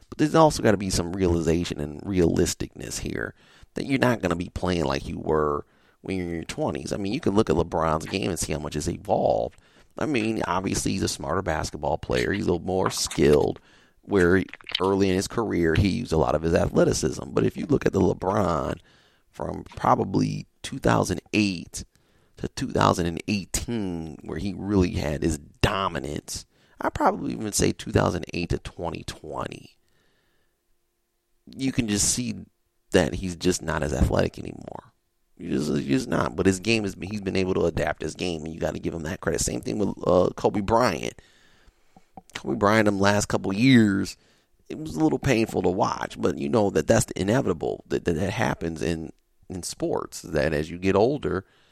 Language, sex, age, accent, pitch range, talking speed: English, male, 30-49, American, 80-100 Hz, 190 wpm